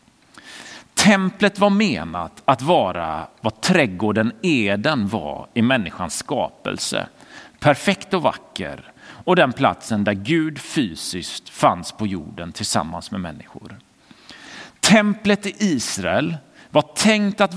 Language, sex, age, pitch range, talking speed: Swedish, male, 40-59, 120-185 Hz, 115 wpm